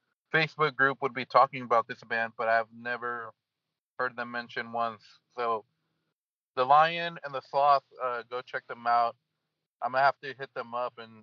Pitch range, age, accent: 120-145 Hz, 30-49, American